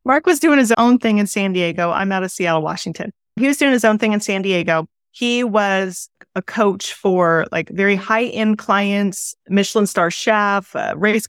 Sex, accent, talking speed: female, American, 190 wpm